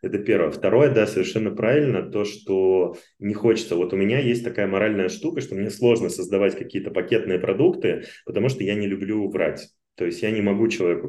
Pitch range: 100-120 Hz